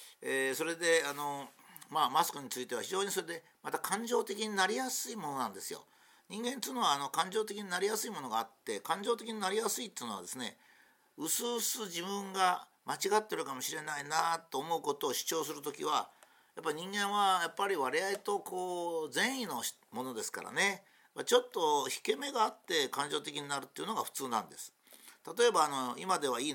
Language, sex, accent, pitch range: Japanese, male, native, 170-250 Hz